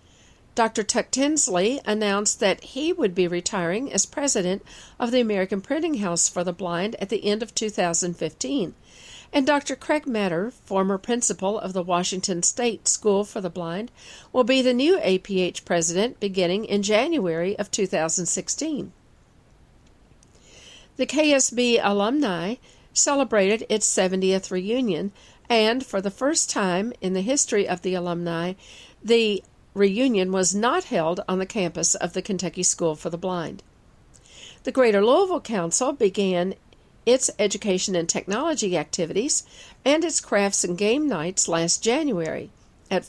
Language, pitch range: English, 185-240 Hz